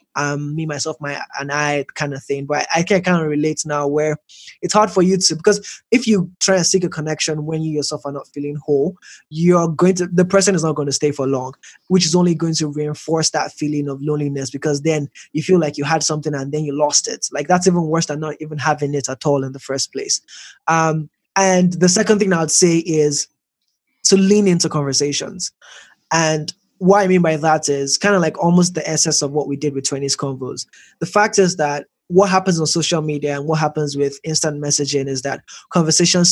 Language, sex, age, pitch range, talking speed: English, male, 20-39, 145-175 Hz, 230 wpm